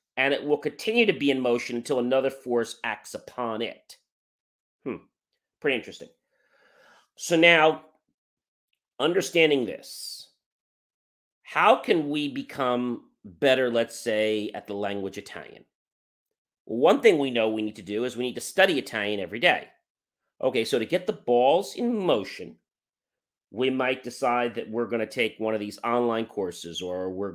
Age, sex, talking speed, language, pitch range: 40-59, male, 155 wpm, English, 115-165 Hz